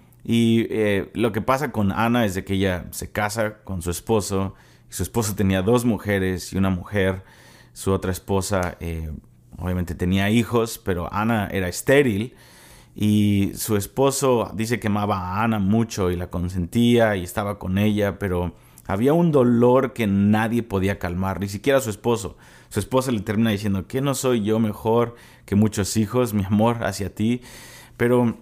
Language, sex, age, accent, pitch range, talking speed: Spanish, male, 30-49, Mexican, 95-115 Hz, 175 wpm